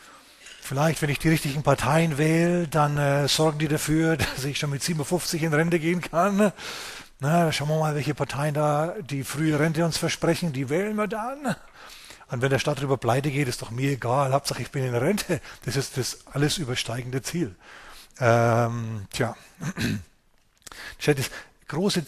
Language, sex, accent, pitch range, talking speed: German, male, German, 125-155 Hz, 170 wpm